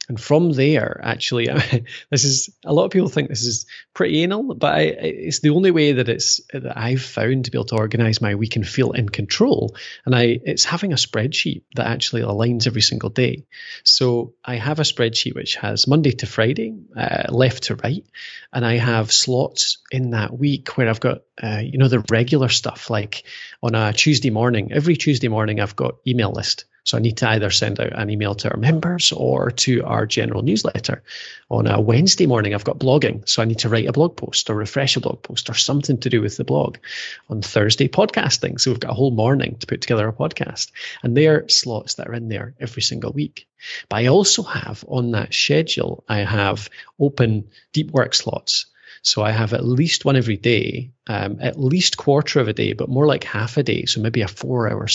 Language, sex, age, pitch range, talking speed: English, male, 30-49, 115-140 Hz, 215 wpm